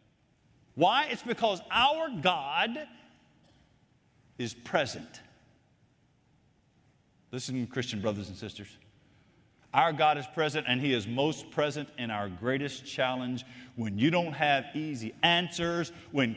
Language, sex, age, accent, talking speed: English, male, 50-69, American, 115 wpm